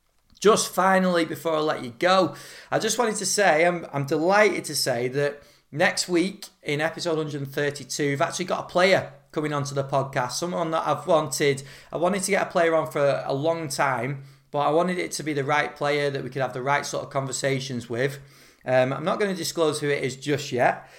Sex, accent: male, British